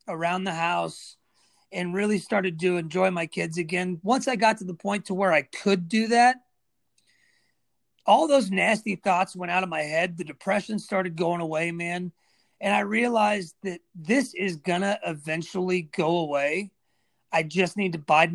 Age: 30-49